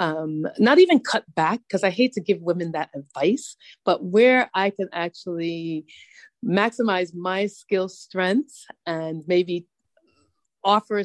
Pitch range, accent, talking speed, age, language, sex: 170-235 Hz, American, 135 wpm, 30-49, English, female